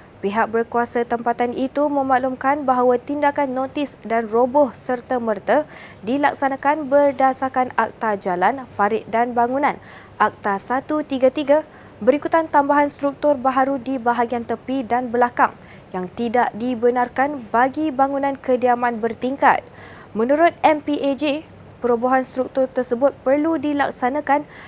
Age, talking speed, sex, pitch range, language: 20-39, 105 wpm, female, 240-285 Hz, Malay